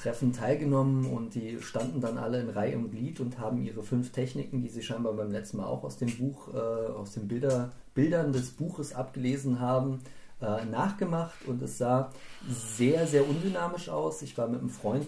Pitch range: 115-140 Hz